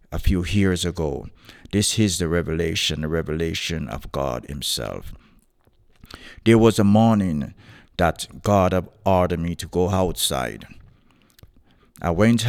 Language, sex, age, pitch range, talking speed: English, male, 50-69, 85-105 Hz, 130 wpm